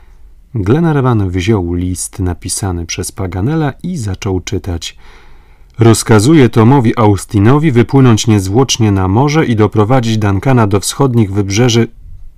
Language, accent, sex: Polish, native, male